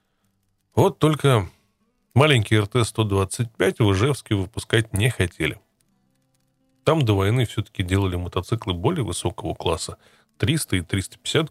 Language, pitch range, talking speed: Russian, 95-120 Hz, 110 wpm